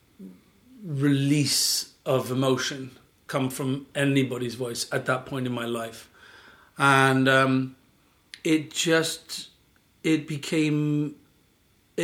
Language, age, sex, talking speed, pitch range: English, 40-59, male, 95 wpm, 130-150 Hz